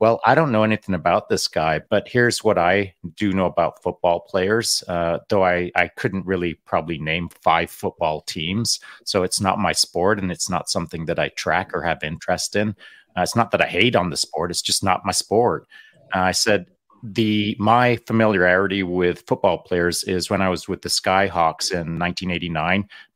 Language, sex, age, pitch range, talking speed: English, male, 30-49, 90-105 Hz, 195 wpm